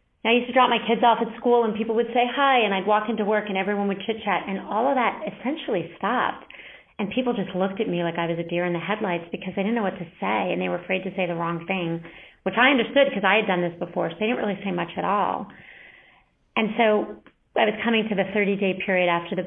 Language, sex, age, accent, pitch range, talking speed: English, female, 30-49, American, 180-225 Hz, 270 wpm